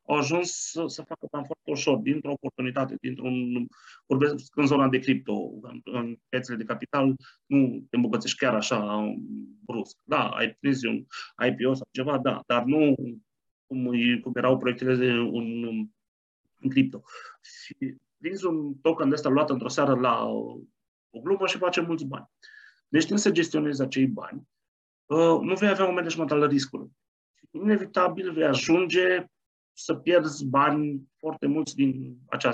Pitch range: 130-160 Hz